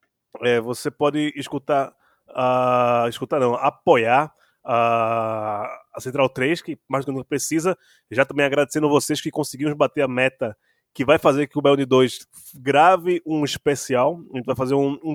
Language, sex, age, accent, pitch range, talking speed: Portuguese, male, 20-39, Brazilian, 130-160 Hz, 175 wpm